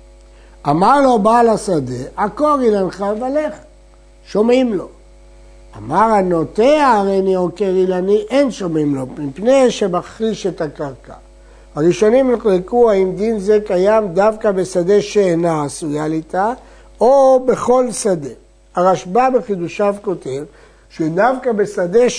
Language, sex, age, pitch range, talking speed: Hebrew, male, 60-79, 180-235 Hz, 110 wpm